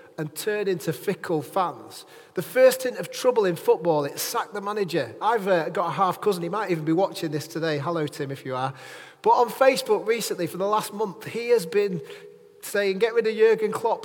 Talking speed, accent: 215 wpm, British